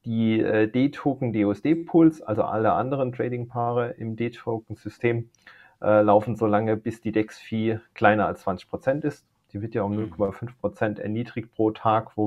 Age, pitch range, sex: 40-59, 105-125 Hz, male